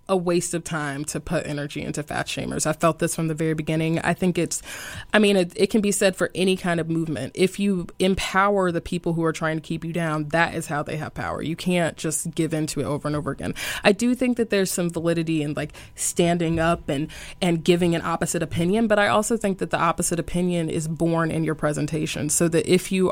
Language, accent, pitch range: English, American, 160-190 Hz